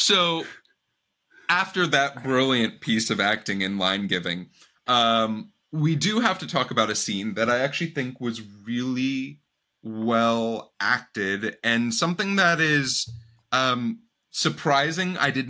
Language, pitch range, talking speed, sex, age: English, 115-150 Hz, 135 wpm, male, 20-39